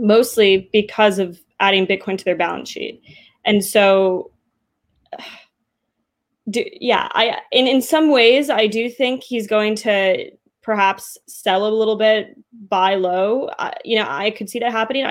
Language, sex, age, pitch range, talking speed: English, female, 10-29, 190-230 Hz, 160 wpm